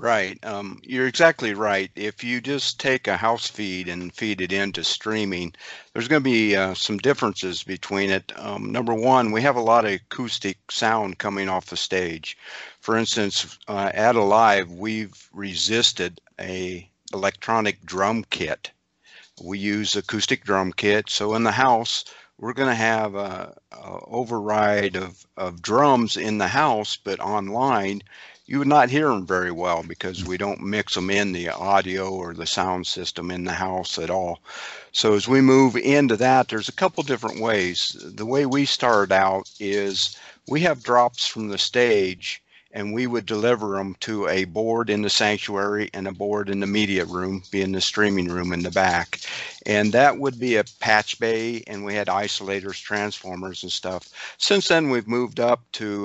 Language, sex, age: English, male, 50-69